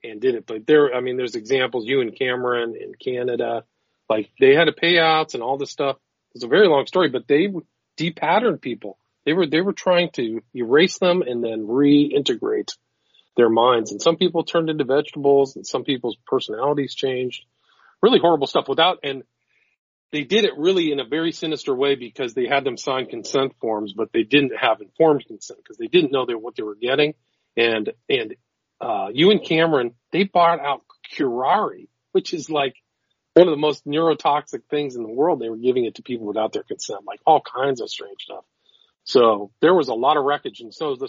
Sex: male